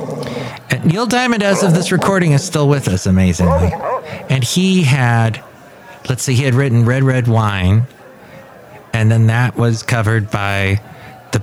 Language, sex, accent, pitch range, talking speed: English, male, American, 110-135 Hz, 150 wpm